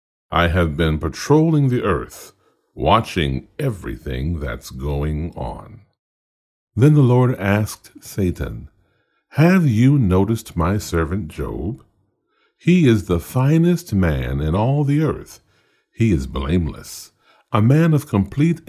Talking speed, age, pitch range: 120 wpm, 60-79, 75-120 Hz